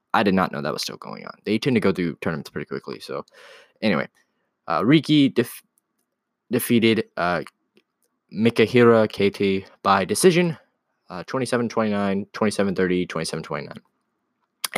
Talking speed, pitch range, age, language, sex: 115 wpm, 100-130 Hz, 20-39, English, male